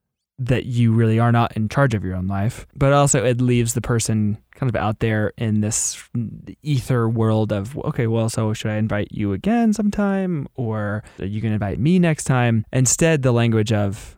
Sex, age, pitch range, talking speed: male, 20-39, 105-125 Hz, 205 wpm